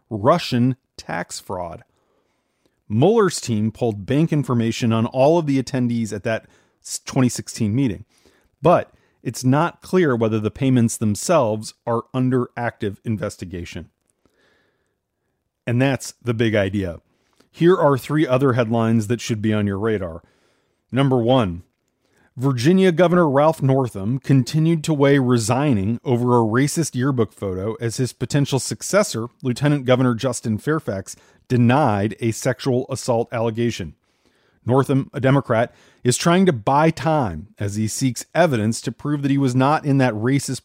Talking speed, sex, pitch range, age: 140 wpm, male, 115-145 Hz, 40-59